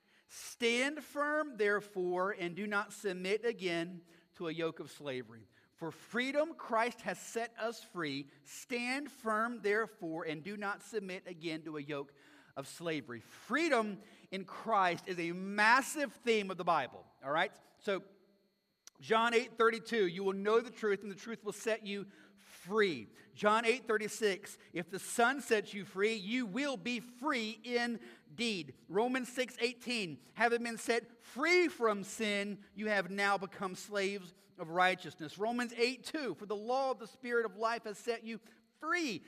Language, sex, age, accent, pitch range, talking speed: English, male, 40-59, American, 190-240 Hz, 155 wpm